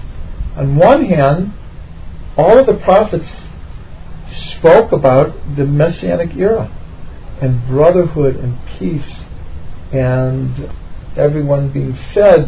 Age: 50-69